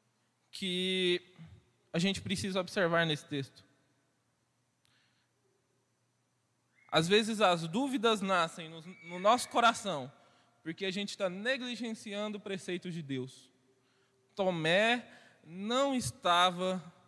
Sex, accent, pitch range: male, Brazilian, 140-220 Hz